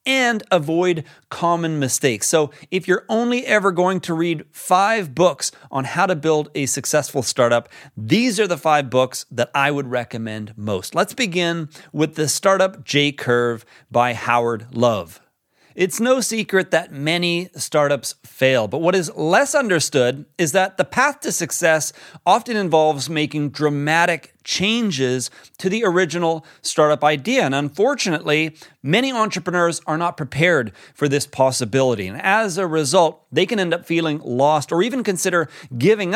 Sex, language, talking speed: male, English, 155 wpm